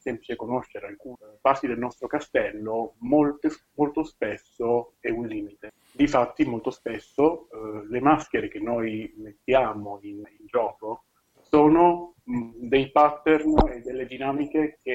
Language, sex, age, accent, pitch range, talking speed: Italian, male, 30-49, native, 115-155 Hz, 125 wpm